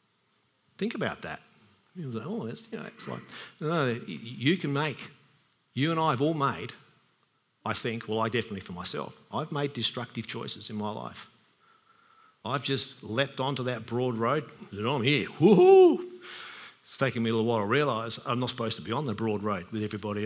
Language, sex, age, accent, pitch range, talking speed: English, male, 50-69, Australian, 115-160 Hz, 185 wpm